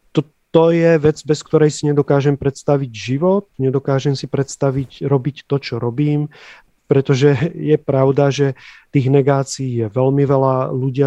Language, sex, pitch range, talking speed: Czech, male, 135-150 Hz, 140 wpm